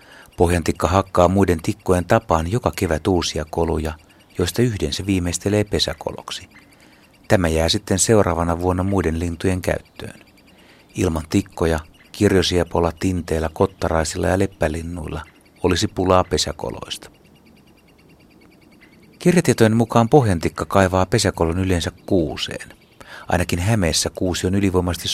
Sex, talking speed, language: male, 105 wpm, Finnish